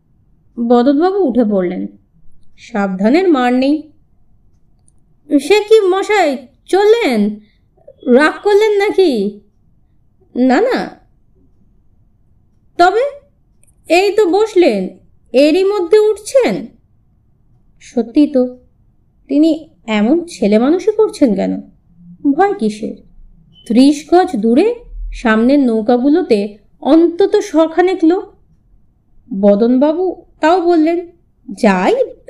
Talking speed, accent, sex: 80 wpm, native, female